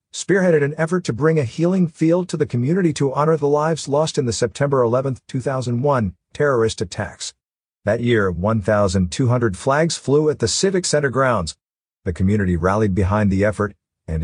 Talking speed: 170 wpm